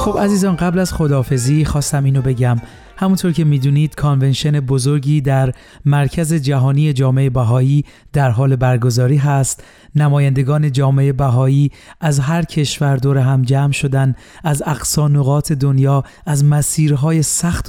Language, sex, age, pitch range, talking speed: Persian, male, 30-49, 130-150 Hz, 130 wpm